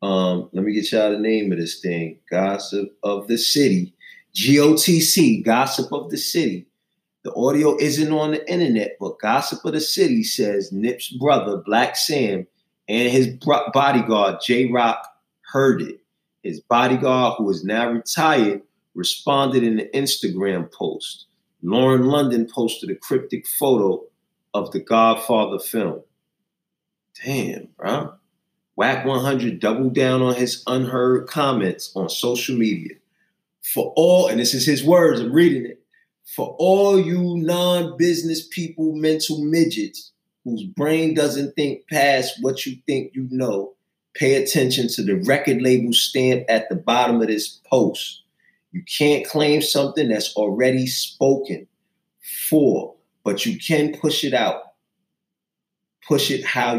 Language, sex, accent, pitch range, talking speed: English, male, American, 115-160 Hz, 140 wpm